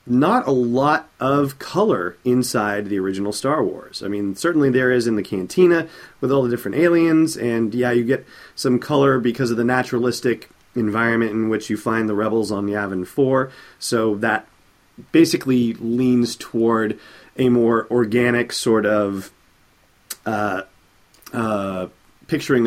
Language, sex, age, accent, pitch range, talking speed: English, male, 30-49, American, 105-125 Hz, 150 wpm